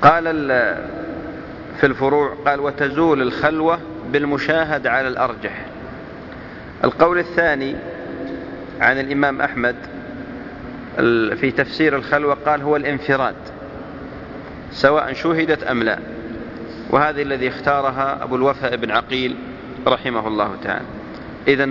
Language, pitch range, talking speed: English, 135-150 Hz, 95 wpm